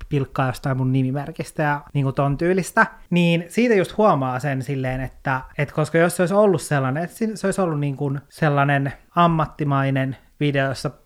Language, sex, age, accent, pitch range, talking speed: Finnish, male, 20-39, native, 140-165 Hz, 175 wpm